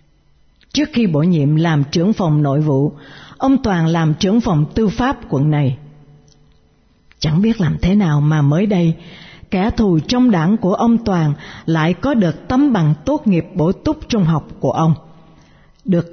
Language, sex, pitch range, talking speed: Vietnamese, female, 155-205 Hz, 175 wpm